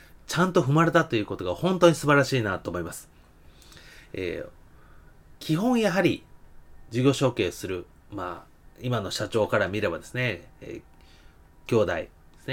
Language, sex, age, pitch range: Japanese, male, 30-49, 110-165 Hz